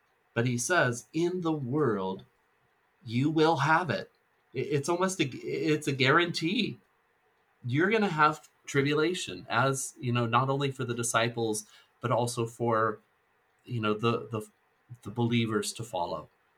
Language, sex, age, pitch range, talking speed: English, male, 30-49, 95-120 Hz, 140 wpm